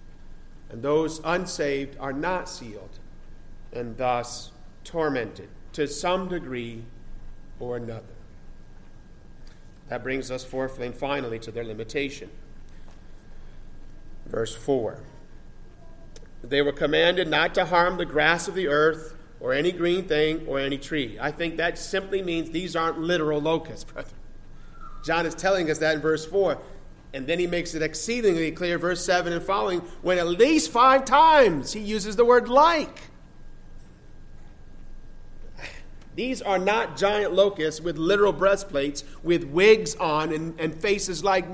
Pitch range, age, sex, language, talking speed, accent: 140-190 Hz, 40-59, male, English, 140 wpm, American